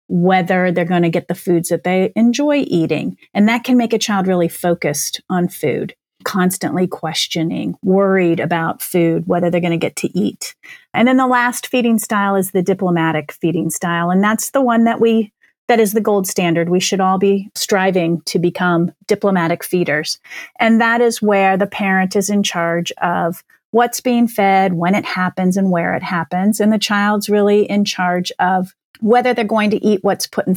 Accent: American